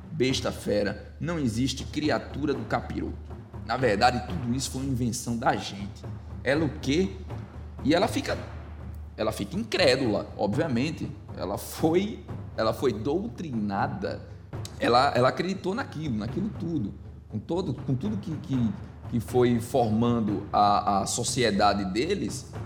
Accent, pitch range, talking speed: Brazilian, 100-130 Hz, 130 wpm